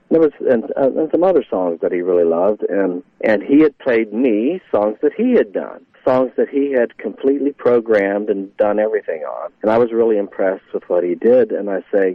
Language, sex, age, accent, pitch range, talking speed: English, male, 50-69, American, 100-140 Hz, 215 wpm